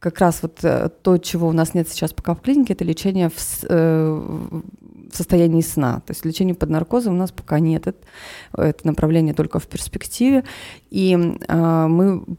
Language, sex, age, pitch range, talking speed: Russian, female, 30-49, 160-190 Hz, 155 wpm